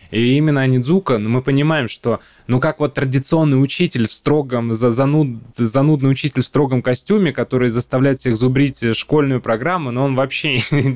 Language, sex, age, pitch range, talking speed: Russian, male, 20-39, 120-140 Hz, 155 wpm